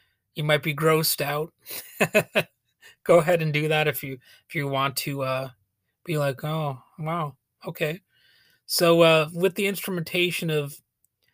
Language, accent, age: English, American, 30-49